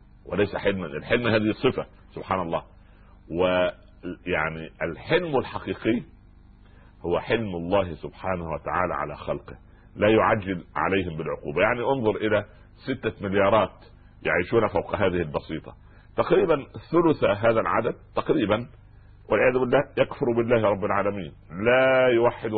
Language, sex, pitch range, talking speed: Arabic, male, 95-115 Hz, 110 wpm